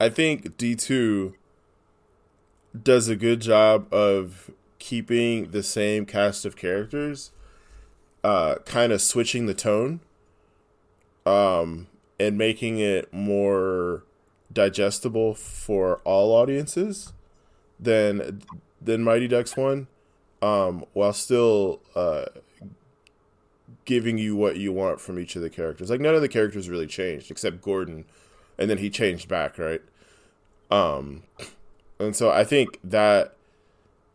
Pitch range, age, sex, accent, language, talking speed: 95-120 Hz, 20-39, male, American, English, 120 wpm